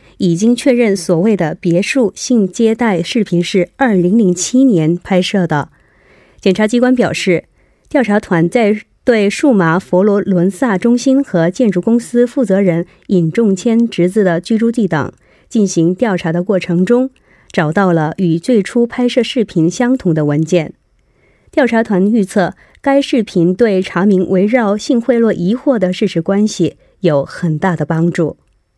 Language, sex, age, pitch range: Korean, female, 30-49, 175-245 Hz